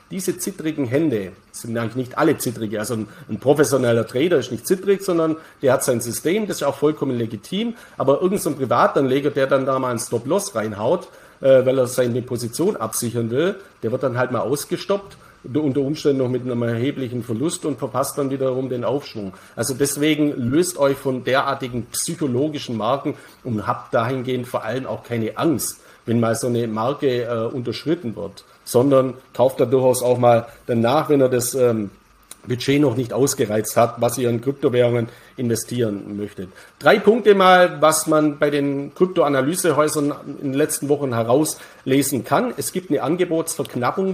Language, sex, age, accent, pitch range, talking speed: German, male, 50-69, German, 120-155 Hz, 170 wpm